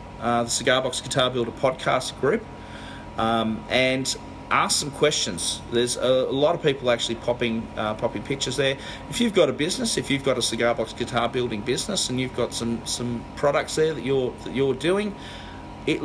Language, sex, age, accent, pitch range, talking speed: English, male, 30-49, Australian, 120-140 Hz, 195 wpm